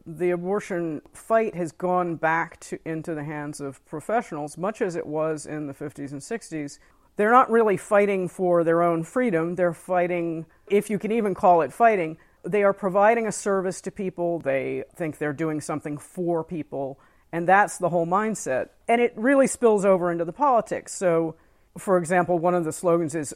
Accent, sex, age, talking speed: American, female, 50-69, 185 wpm